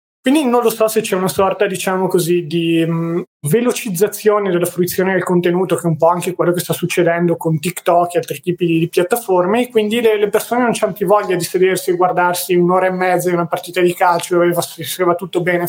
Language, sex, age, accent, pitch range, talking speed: Italian, male, 20-39, native, 175-200 Hz, 230 wpm